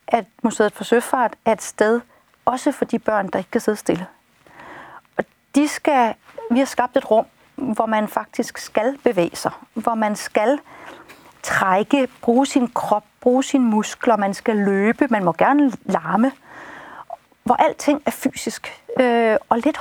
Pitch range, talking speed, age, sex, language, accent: 215-265 Hz, 165 wpm, 40-59, female, Danish, native